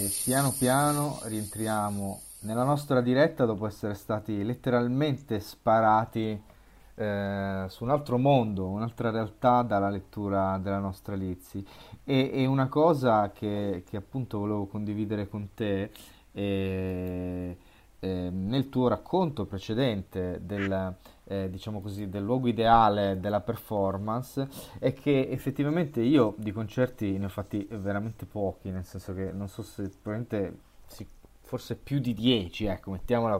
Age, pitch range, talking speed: 20-39, 100-125 Hz, 130 wpm